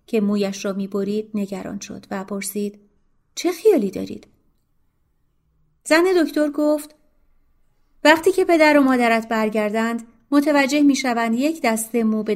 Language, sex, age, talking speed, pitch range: Persian, female, 30-49, 125 wpm, 195-235 Hz